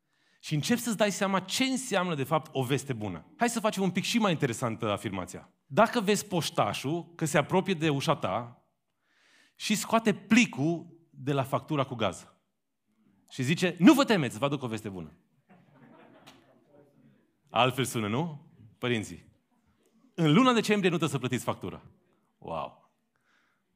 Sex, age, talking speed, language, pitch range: male, 30-49, 155 wpm, Romanian, 125-190 Hz